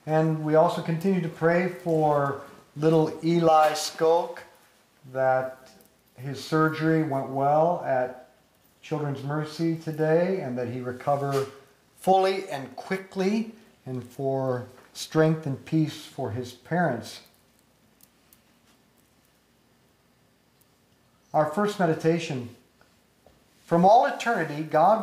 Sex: male